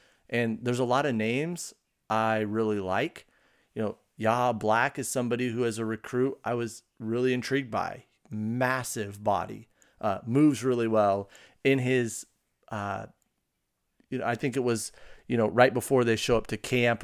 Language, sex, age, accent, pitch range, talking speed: English, male, 30-49, American, 110-130 Hz, 170 wpm